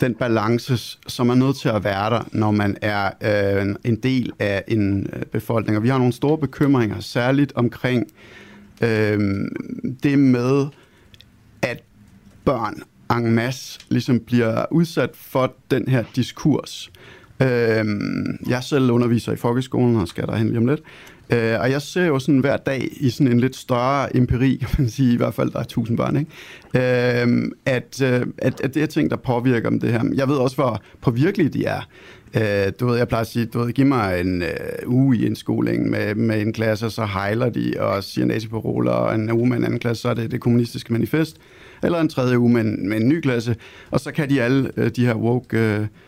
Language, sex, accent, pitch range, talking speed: Danish, male, native, 115-130 Hz, 200 wpm